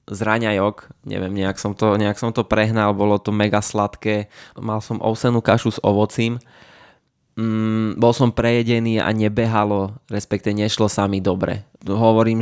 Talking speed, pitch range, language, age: 145 wpm, 100-110 Hz, Slovak, 20-39